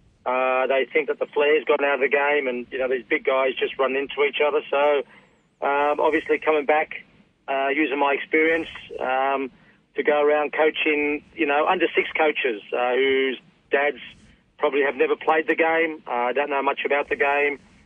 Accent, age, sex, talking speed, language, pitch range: Australian, 40-59, male, 190 wpm, English, 140-165 Hz